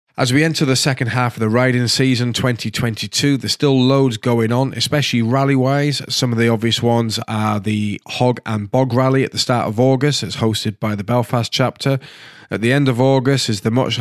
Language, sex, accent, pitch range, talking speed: English, male, British, 115-130 Hz, 210 wpm